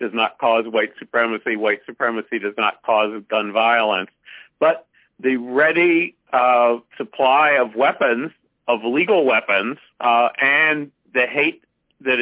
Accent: American